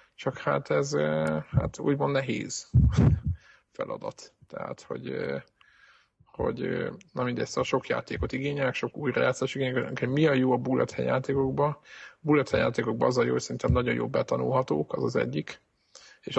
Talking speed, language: 145 wpm, Hungarian